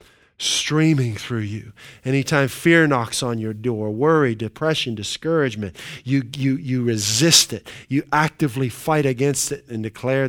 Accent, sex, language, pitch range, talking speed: American, male, English, 115-145 Hz, 135 wpm